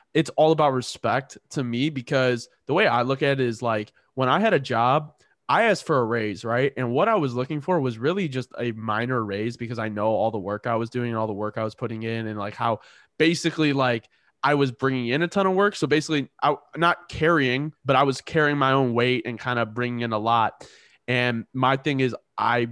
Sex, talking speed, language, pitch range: male, 245 wpm, English, 115-140 Hz